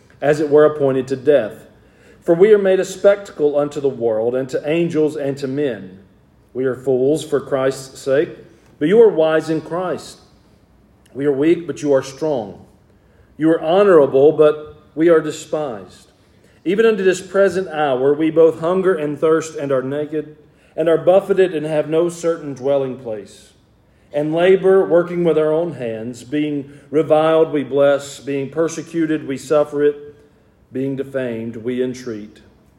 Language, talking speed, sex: English, 165 wpm, male